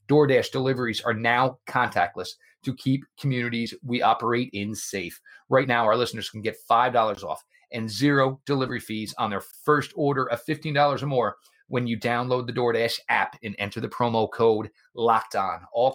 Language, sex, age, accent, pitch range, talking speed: English, male, 30-49, American, 105-125 Hz, 180 wpm